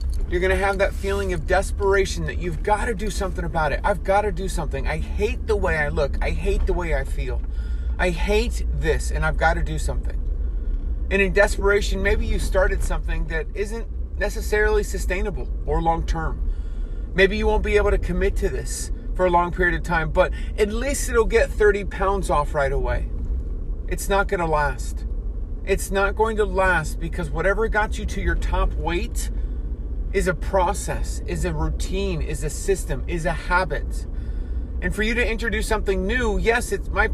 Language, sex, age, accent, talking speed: English, male, 30-49, American, 185 wpm